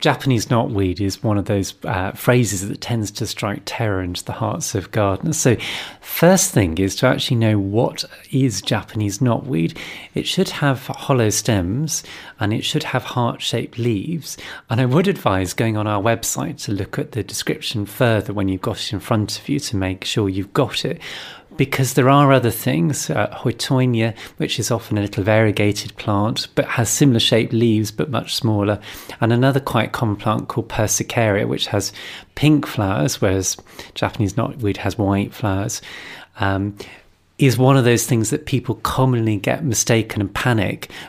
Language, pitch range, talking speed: English, 100-130 Hz, 175 wpm